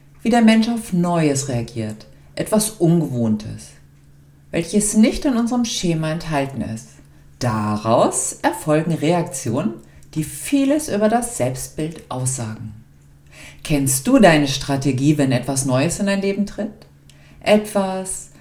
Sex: female